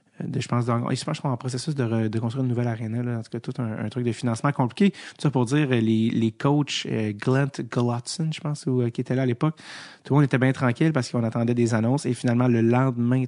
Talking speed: 270 wpm